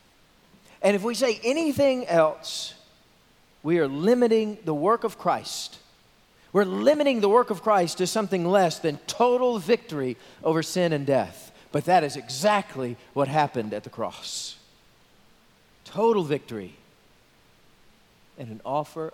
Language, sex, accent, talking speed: English, male, American, 135 wpm